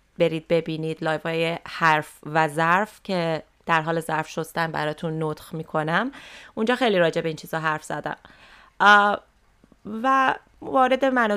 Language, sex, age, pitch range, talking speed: Persian, female, 30-49, 160-200 Hz, 130 wpm